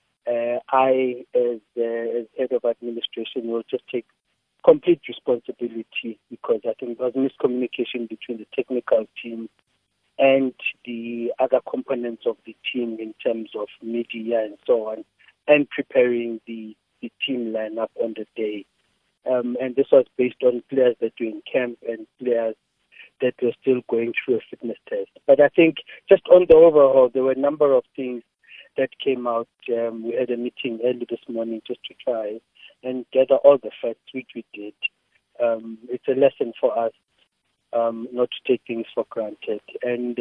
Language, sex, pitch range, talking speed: English, male, 115-135 Hz, 175 wpm